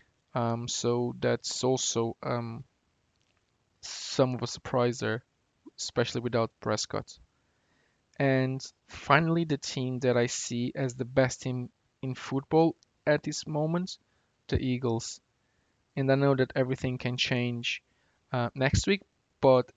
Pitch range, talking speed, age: 120-130 Hz, 130 wpm, 20-39